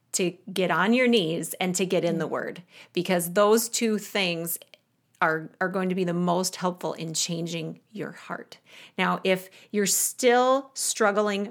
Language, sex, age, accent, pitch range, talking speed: English, female, 30-49, American, 185-220 Hz, 165 wpm